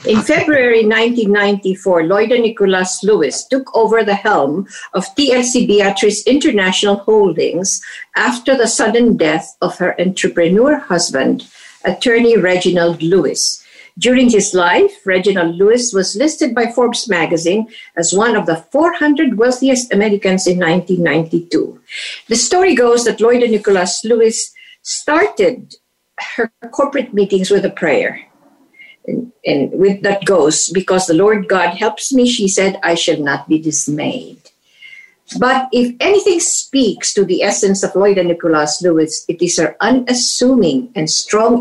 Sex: female